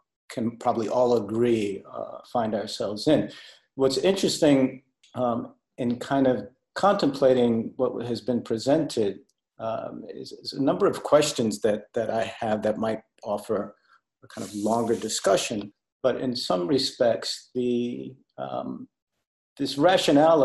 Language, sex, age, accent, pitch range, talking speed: English, male, 50-69, American, 110-125 Hz, 135 wpm